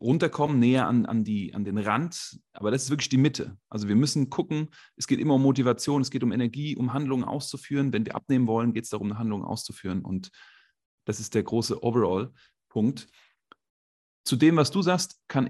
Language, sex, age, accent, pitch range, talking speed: German, male, 30-49, German, 105-145 Hz, 200 wpm